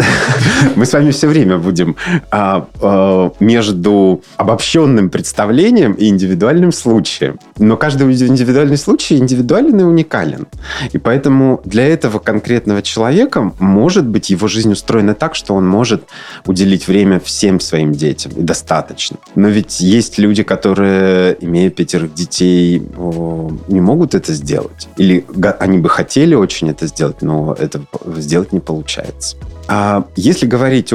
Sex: male